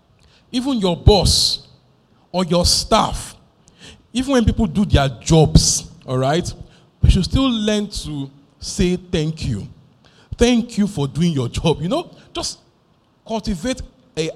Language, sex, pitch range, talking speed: English, male, 140-210 Hz, 140 wpm